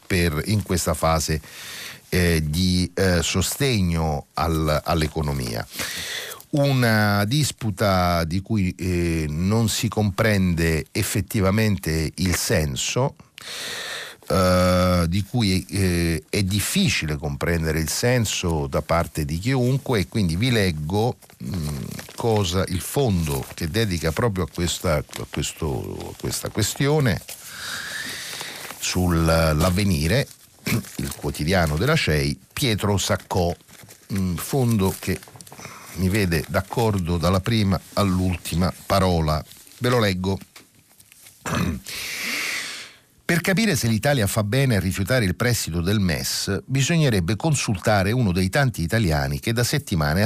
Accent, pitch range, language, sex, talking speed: native, 80-110 Hz, Italian, male, 105 wpm